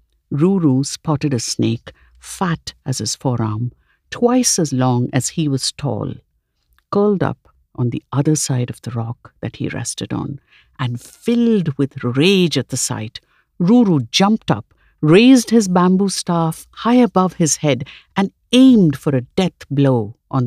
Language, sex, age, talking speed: English, female, 60-79, 155 wpm